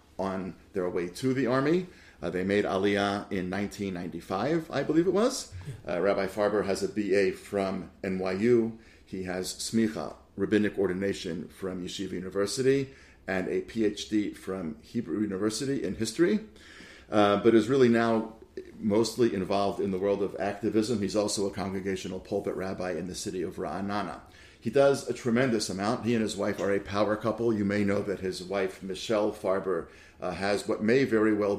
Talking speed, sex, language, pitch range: 170 wpm, male, English, 95-115 Hz